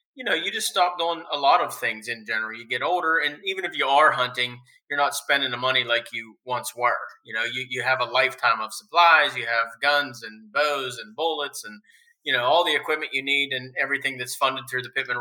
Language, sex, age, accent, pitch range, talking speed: English, male, 30-49, American, 130-160 Hz, 240 wpm